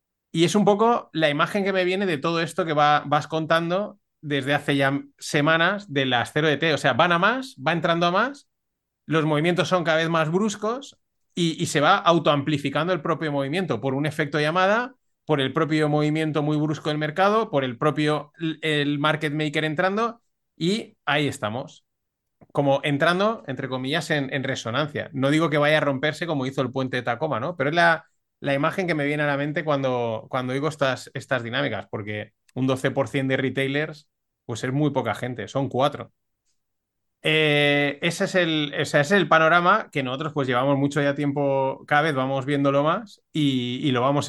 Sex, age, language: male, 30-49, Spanish